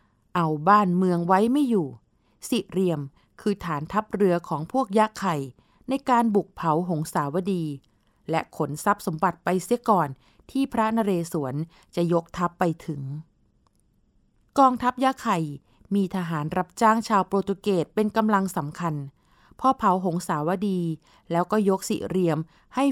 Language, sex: Thai, female